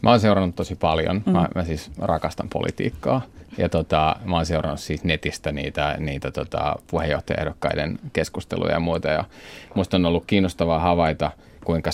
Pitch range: 80-100 Hz